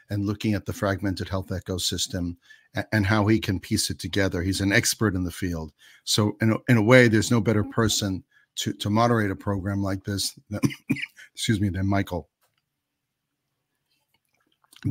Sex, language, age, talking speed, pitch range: male, English, 60-79, 175 wpm, 95-110 Hz